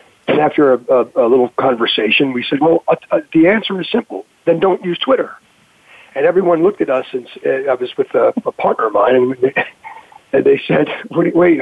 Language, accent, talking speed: English, American, 185 wpm